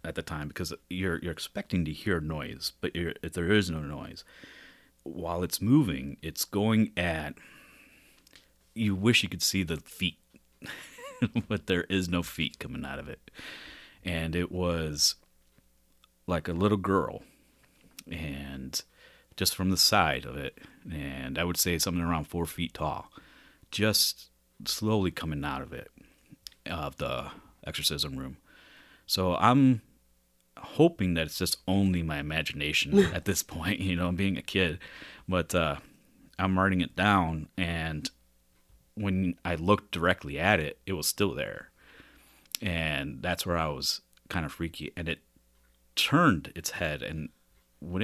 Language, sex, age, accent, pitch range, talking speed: English, male, 30-49, American, 75-95 Hz, 150 wpm